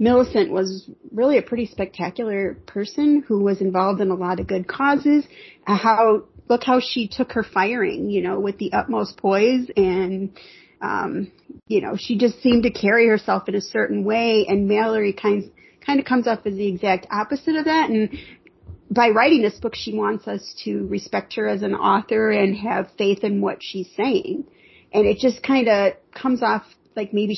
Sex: female